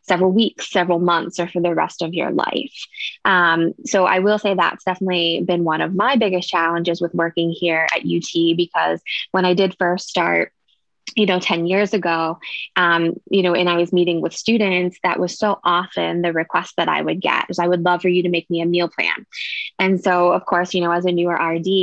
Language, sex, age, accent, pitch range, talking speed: English, female, 20-39, American, 170-195 Hz, 225 wpm